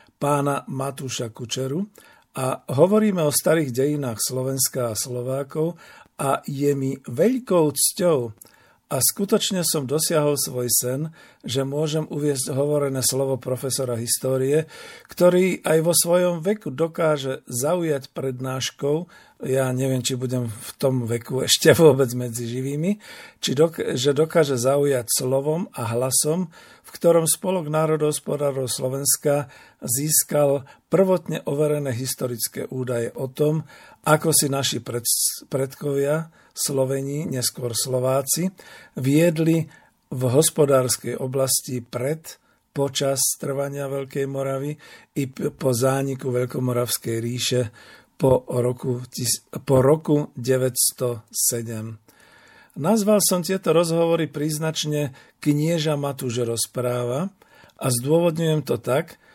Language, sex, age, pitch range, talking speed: Slovak, male, 50-69, 130-155 Hz, 105 wpm